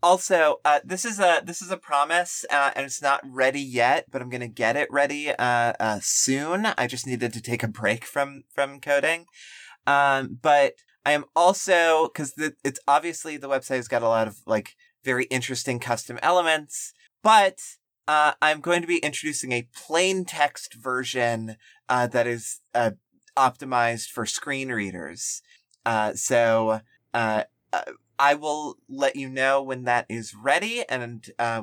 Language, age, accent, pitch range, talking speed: English, 30-49, American, 115-145 Hz, 170 wpm